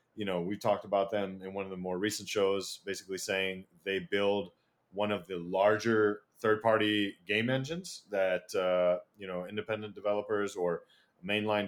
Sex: male